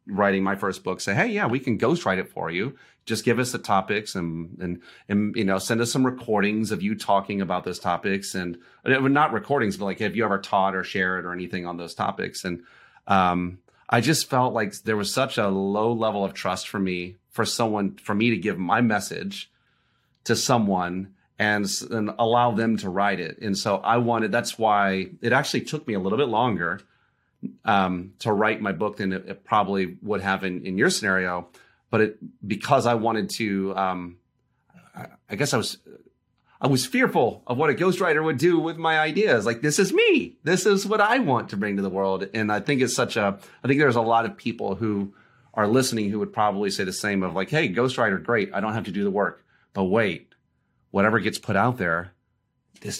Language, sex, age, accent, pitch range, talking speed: English, male, 30-49, American, 95-120 Hz, 215 wpm